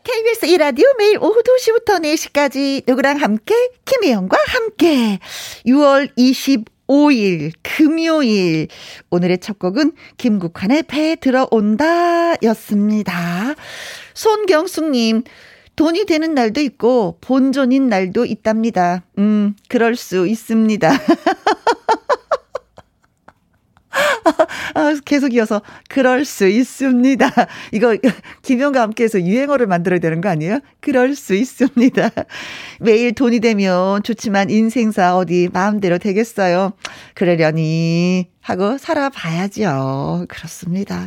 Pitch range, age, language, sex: 200-285 Hz, 40-59, Korean, female